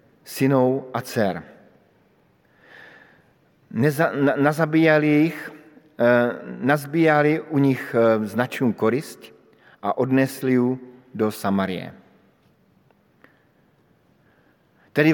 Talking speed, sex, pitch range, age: 55 wpm, male, 120-145 Hz, 50-69